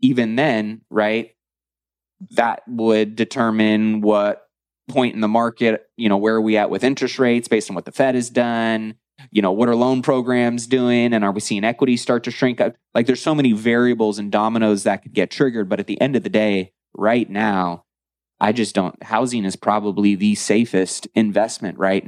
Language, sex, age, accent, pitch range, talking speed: English, male, 20-39, American, 100-120 Hz, 195 wpm